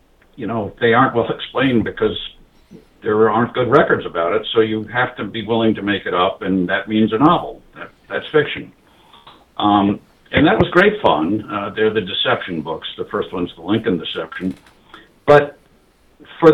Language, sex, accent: English, male, American